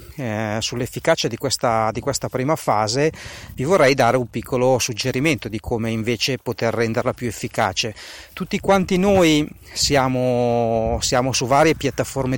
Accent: native